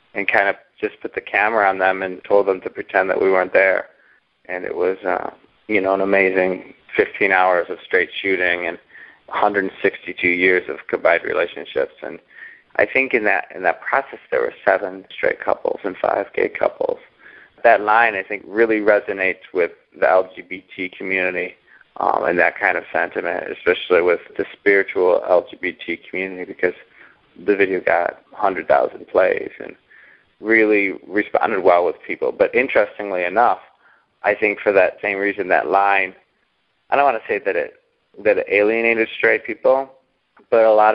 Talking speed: 165 wpm